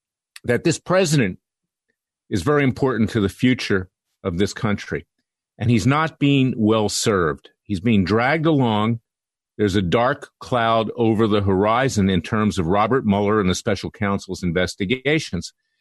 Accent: American